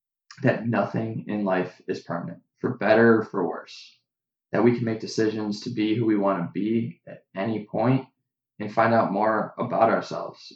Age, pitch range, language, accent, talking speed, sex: 20-39, 100-125 Hz, English, American, 180 wpm, male